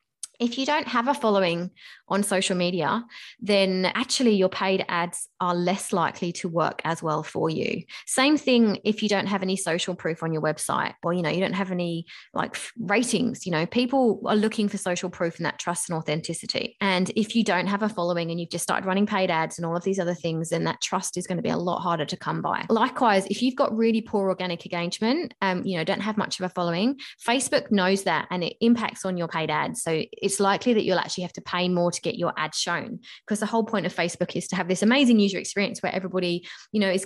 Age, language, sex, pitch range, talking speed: 20-39, English, female, 180-220 Hz, 245 wpm